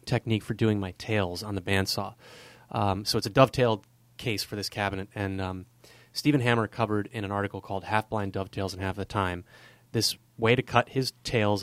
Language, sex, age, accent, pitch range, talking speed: English, male, 30-49, American, 105-120 Hz, 200 wpm